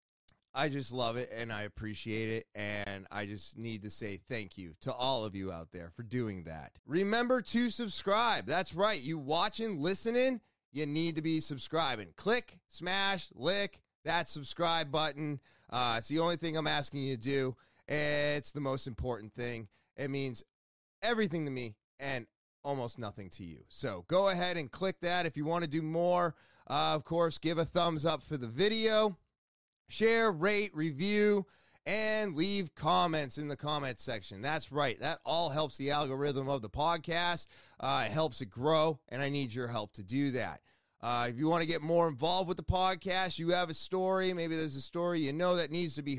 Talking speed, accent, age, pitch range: 195 wpm, American, 30-49, 125-175 Hz